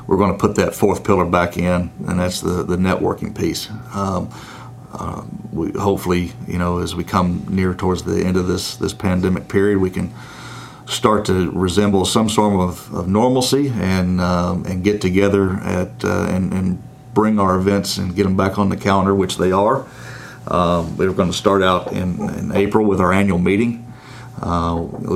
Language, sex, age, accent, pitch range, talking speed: English, male, 40-59, American, 90-105 Hz, 190 wpm